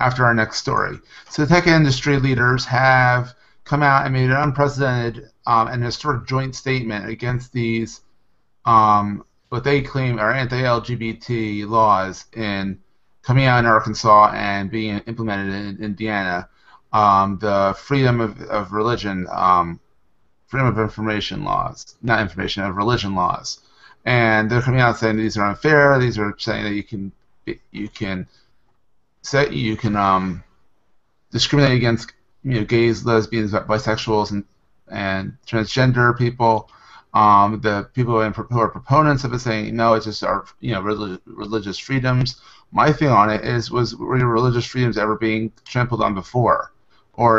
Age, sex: 30-49, male